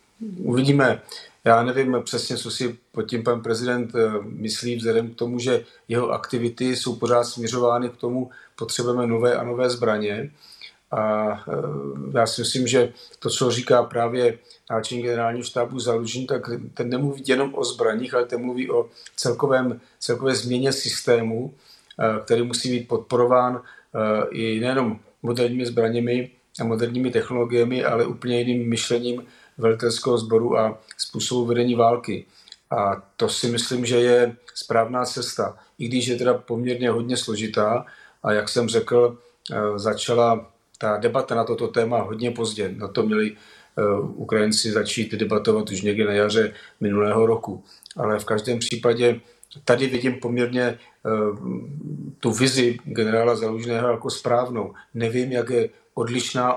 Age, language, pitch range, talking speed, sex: 40-59, Slovak, 115-125 Hz, 140 wpm, male